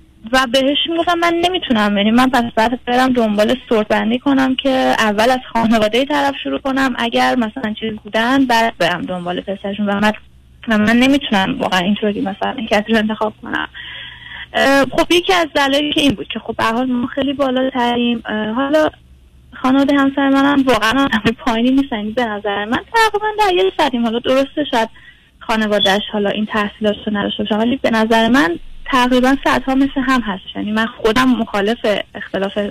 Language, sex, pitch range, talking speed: Persian, female, 220-275 Hz, 165 wpm